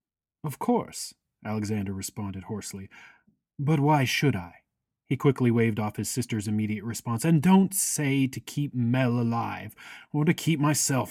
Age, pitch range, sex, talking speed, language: 30-49, 105-150 Hz, male, 150 wpm, English